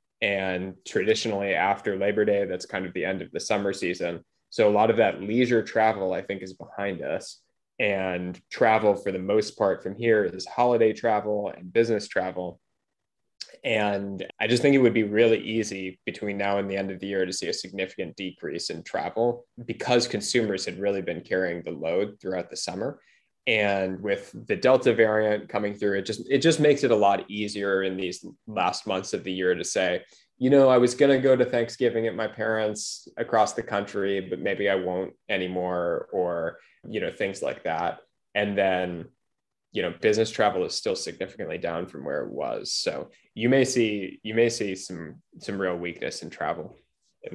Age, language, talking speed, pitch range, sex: 20-39, English, 195 wpm, 95-115 Hz, male